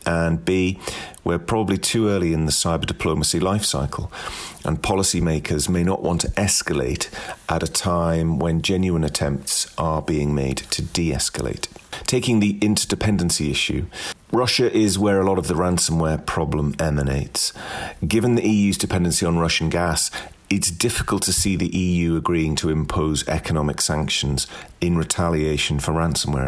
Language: English